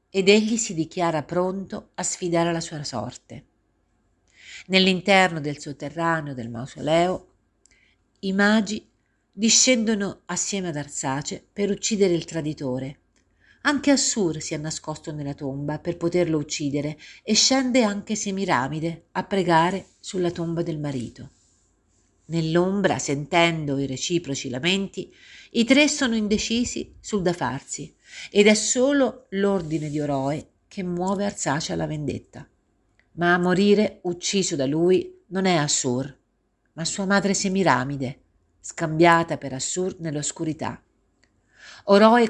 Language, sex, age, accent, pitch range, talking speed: Italian, female, 50-69, native, 150-195 Hz, 120 wpm